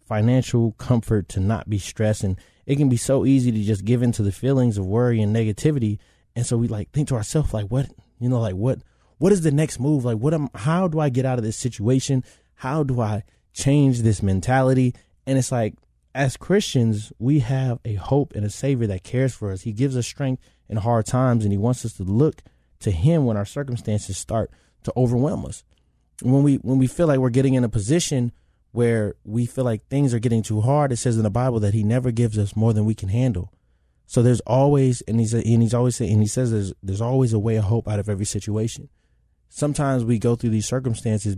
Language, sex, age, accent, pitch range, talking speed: English, male, 20-39, American, 105-130 Hz, 235 wpm